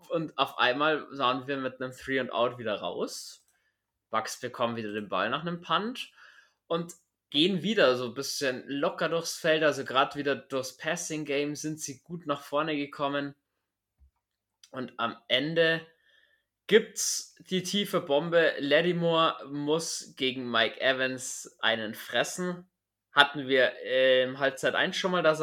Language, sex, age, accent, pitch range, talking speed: German, male, 20-39, German, 130-165 Hz, 145 wpm